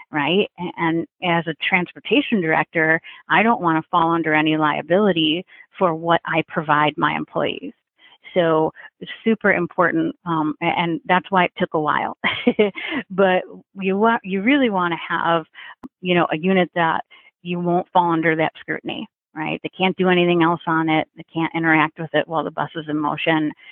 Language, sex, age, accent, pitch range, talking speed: English, female, 40-59, American, 160-185 Hz, 175 wpm